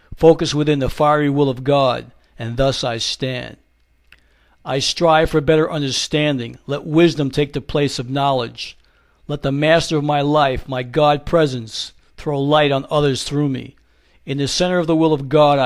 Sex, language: male, English